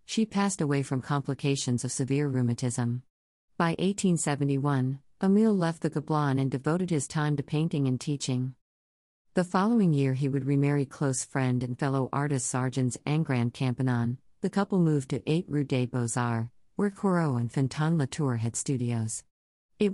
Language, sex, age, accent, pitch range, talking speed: English, female, 50-69, American, 130-165 Hz, 155 wpm